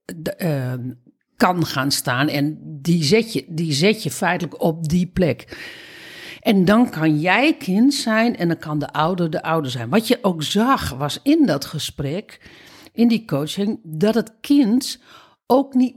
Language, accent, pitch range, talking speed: Dutch, Dutch, 170-255 Hz, 175 wpm